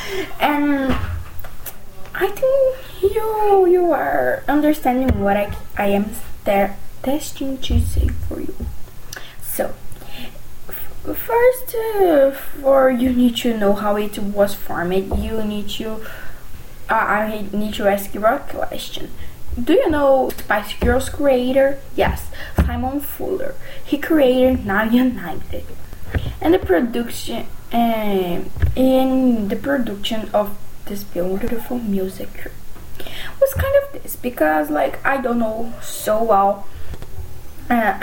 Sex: female